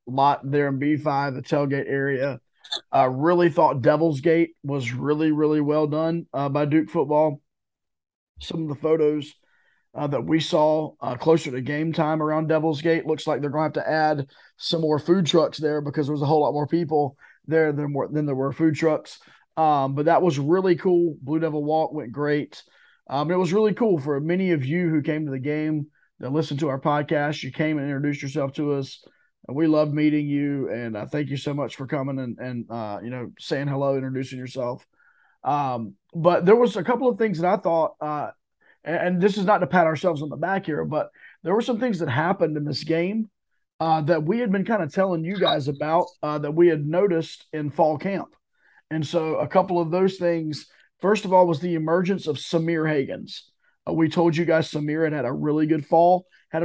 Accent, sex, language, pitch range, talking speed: American, male, English, 145-170 Hz, 220 wpm